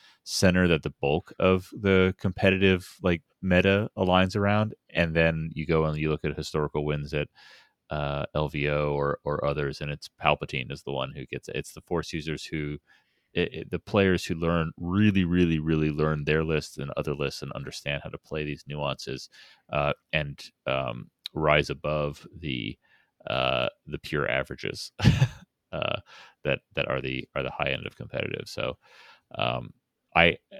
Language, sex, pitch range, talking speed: English, male, 70-90 Hz, 170 wpm